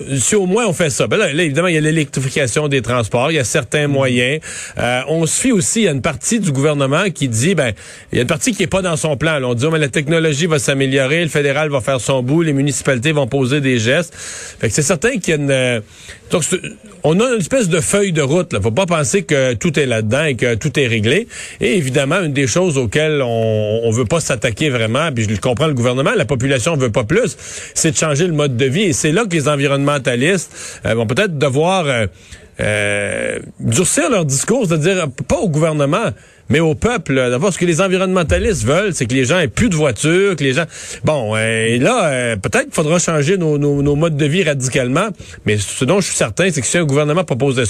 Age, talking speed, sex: 40-59, 245 wpm, male